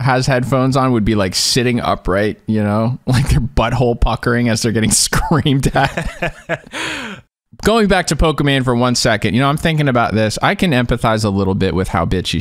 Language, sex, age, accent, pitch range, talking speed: English, male, 20-39, American, 100-130 Hz, 200 wpm